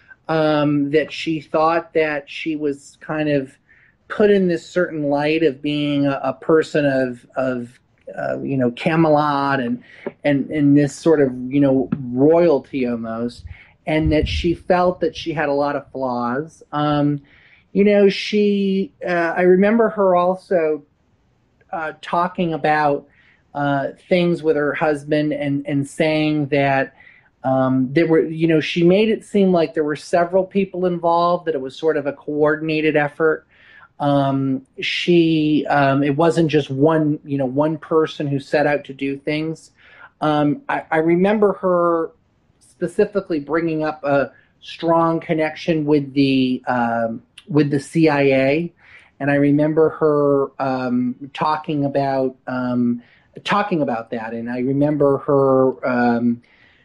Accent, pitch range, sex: American, 140-165 Hz, male